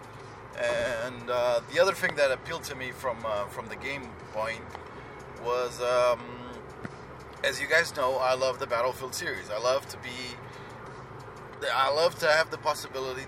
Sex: male